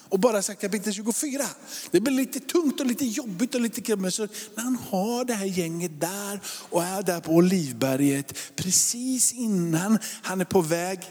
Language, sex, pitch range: Swedish, male, 145-195 Hz